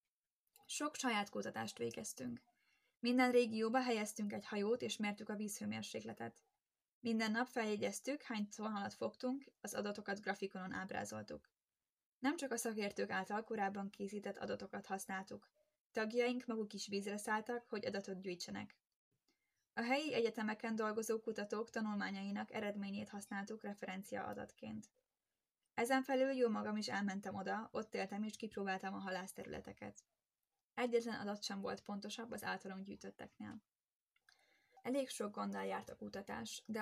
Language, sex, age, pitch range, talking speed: Hungarian, female, 10-29, 195-240 Hz, 125 wpm